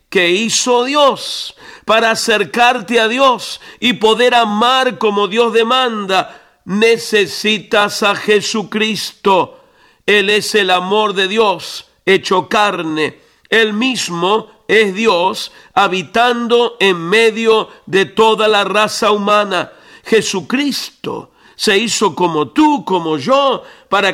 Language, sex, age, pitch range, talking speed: Spanish, male, 50-69, 195-240 Hz, 110 wpm